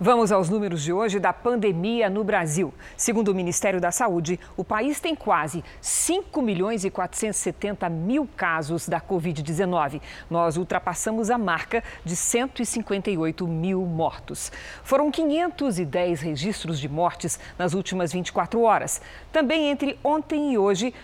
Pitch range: 180-260 Hz